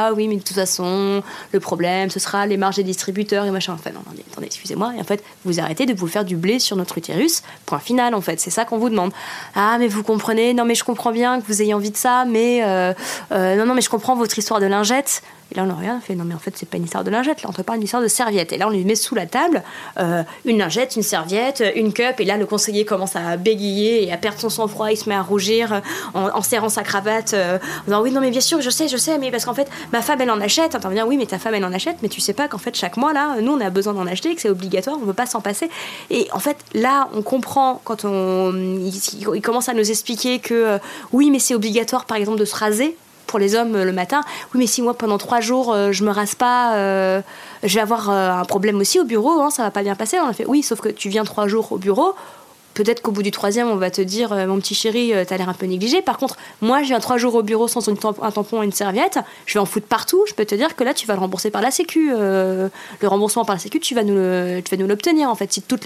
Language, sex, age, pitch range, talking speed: French, female, 20-39, 200-240 Hz, 300 wpm